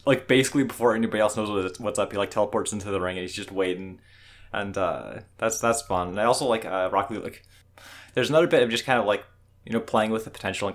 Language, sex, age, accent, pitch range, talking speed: English, male, 20-39, American, 90-105 Hz, 255 wpm